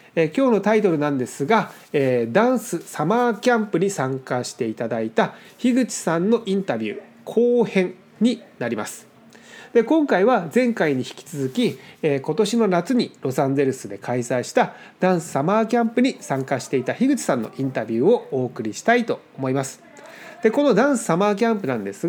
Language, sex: Japanese, male